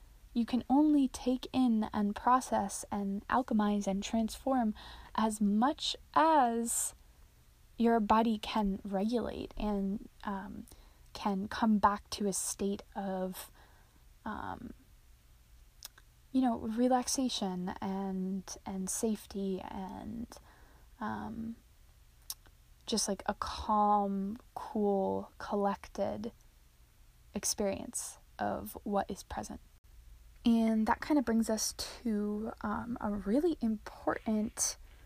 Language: English